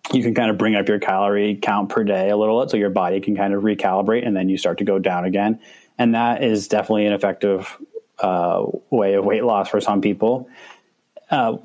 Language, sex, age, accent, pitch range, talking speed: English, male, 20-39, American, 95-115 Hz, 225 wpm